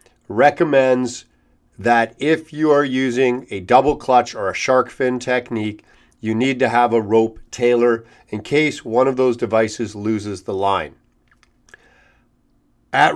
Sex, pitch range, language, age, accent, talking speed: male, 120-145 Hz, English, 40-59, American, 140 wpm